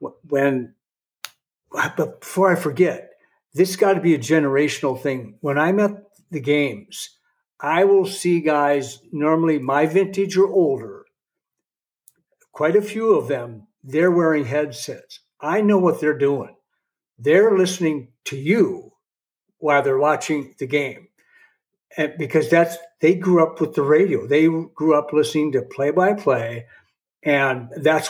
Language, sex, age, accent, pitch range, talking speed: English, male, 60-79, American, 140-185 Hz, 145 wpm